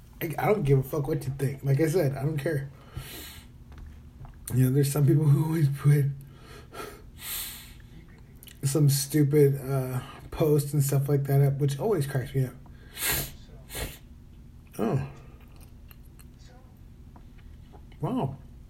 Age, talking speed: 20-39, 120 wpm